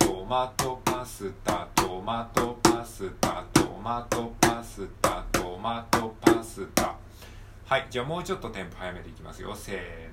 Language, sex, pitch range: Japanese, male, 95-120 Hz